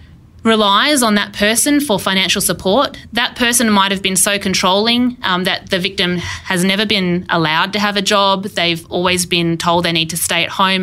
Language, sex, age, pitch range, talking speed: English, female, 20-39, 170-215 Hz, 200 wpm